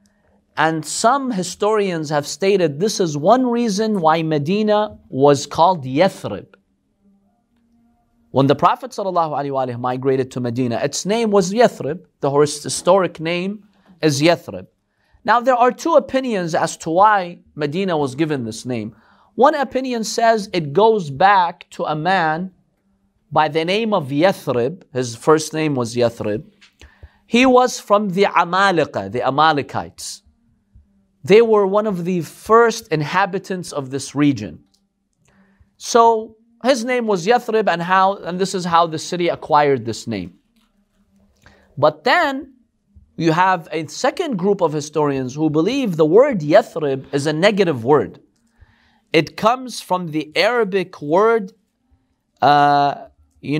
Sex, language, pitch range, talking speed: male, English, 145-215 Hz, 135 wpm